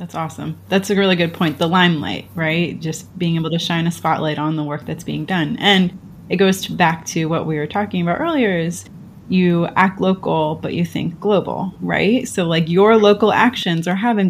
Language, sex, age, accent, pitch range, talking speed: English, female, 20-39, American, 165-205 Hz, 210 wpm